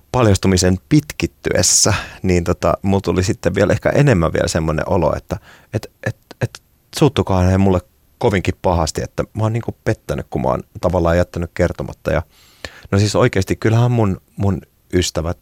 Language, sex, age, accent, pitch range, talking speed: Finnish, male, 30-49, native, 80-110 Hz, 160 wpm